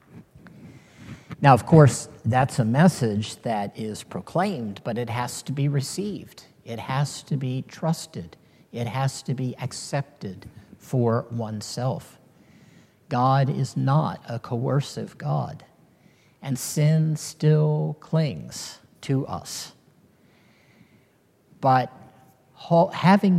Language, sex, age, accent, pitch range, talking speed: English, male, 50-69, American, 120-150 Hz, 105 wpm